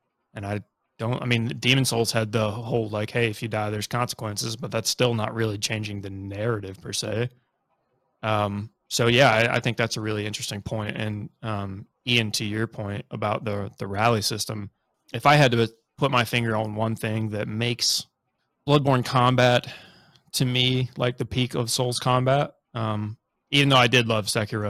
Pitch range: 110-125 Hz